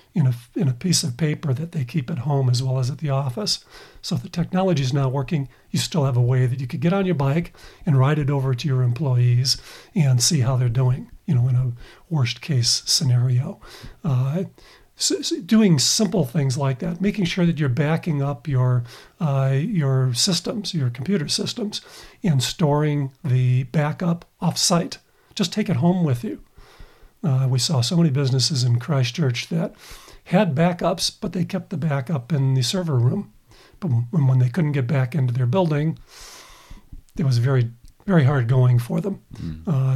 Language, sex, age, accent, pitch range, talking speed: English, male, 50-69, American, 130-170 Hz, 180 wpm